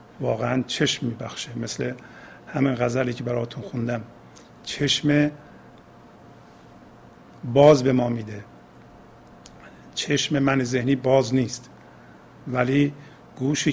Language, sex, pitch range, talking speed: Persian, male, 120-130 Hz, 90 wpm